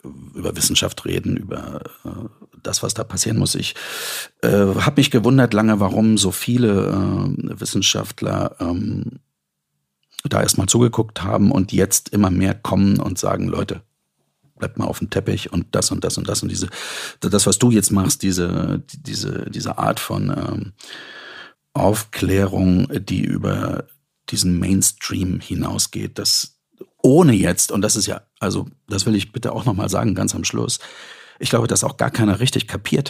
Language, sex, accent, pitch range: German, male, German, 95-120 Hz